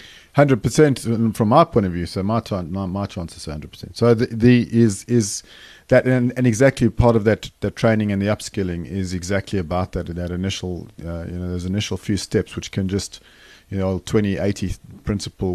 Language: English